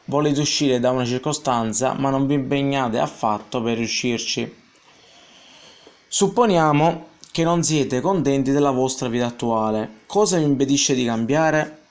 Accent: native